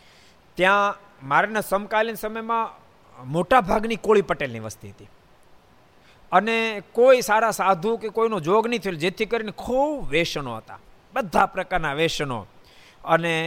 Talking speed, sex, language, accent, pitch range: 125 wpm, male, Gujarati, native, 130-215 Hz